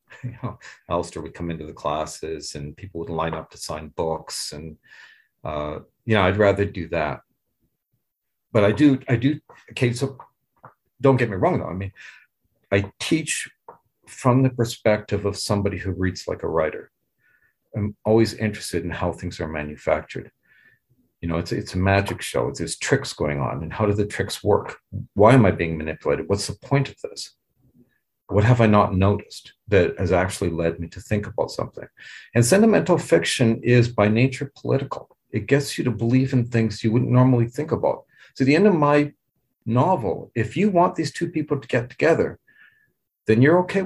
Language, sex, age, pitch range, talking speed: English, male, 50-69, 95-130 Hz, 185 wpm